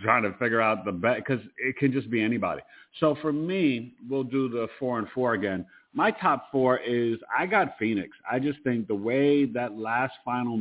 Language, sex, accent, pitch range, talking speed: English, male, American, 100-115 Hz, 210 wpm